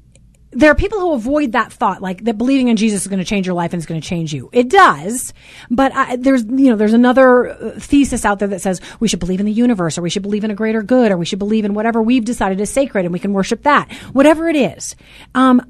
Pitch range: 210-270 Hz